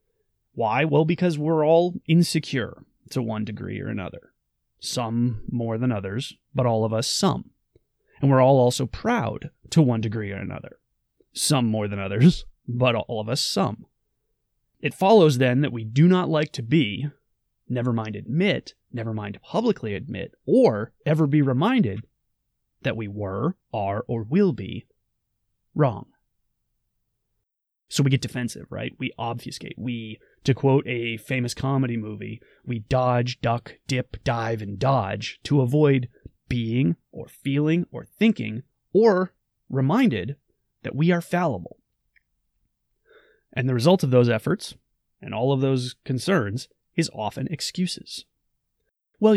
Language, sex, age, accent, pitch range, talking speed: English, male, 30-49, American, 110-155 Hz, 140 wpm